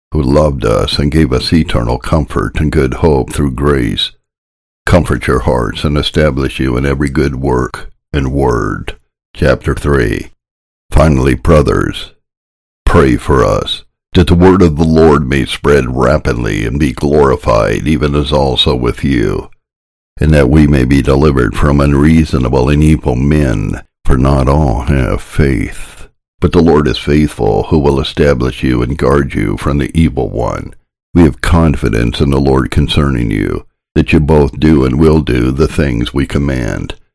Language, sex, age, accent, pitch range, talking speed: English, male, 60-79, American, 65-75 Hz, 160 wpm